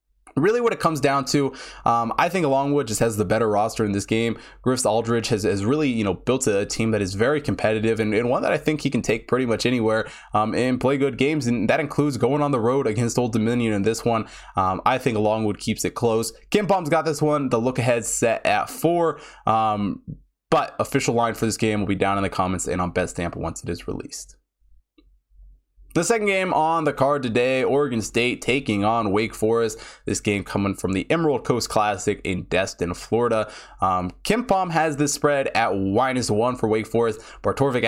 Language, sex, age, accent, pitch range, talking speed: English, male, 20-39, American, 105-135 Hz, 215 wpm